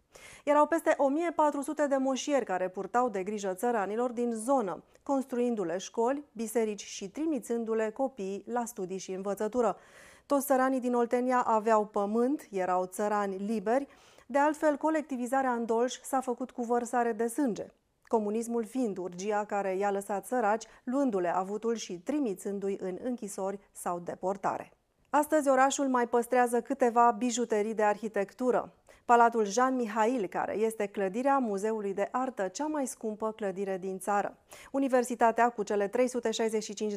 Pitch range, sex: 200-255 Hz, female